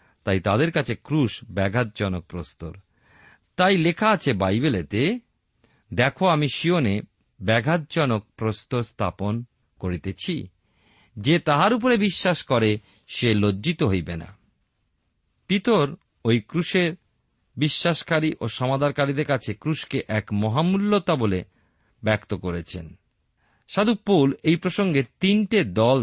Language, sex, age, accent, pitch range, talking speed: Bengali, male, 50-69, native, 105-165 Hz, 100 wpm